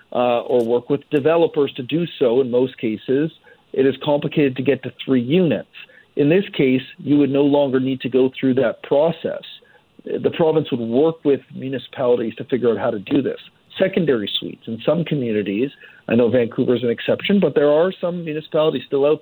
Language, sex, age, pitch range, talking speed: English, male, 50-69, 130-165 Hz, 195 wpm